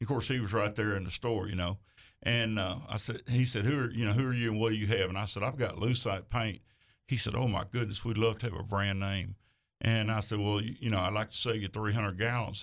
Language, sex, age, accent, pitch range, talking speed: English, male, 60-79, American, 105-120 Hz, 295 wpm